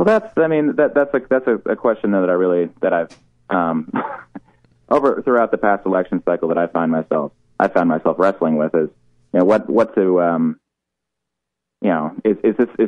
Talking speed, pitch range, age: 195 wpm, 80-105 Hz, 30-49